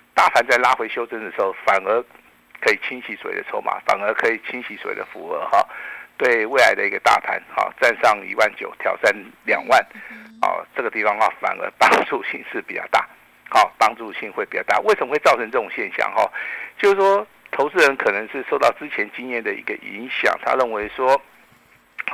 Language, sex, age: Chinese, male, 60-79